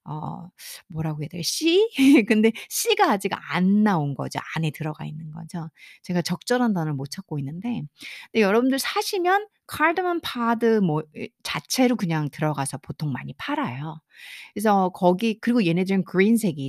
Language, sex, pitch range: Korean, female, 165-245 Hz